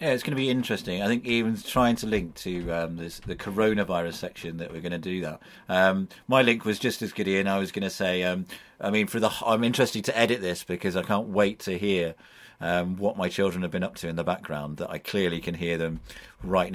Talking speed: 255 wpm